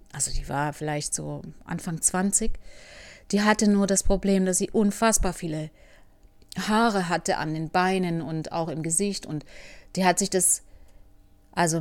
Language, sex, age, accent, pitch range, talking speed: German, female, 30-49, German, 155-210 Hz, 160 wpm